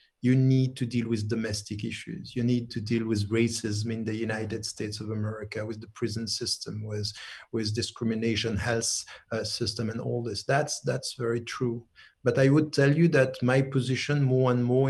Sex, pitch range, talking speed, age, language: male, 110-125 Hz, 190 wpm, 50-69, English